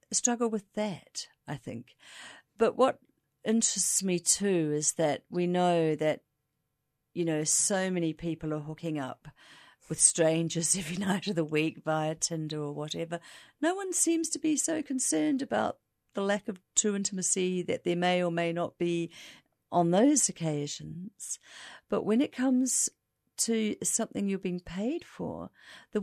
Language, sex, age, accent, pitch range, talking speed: English, female, 50-69, British, 160-220 Hz, 155 wpm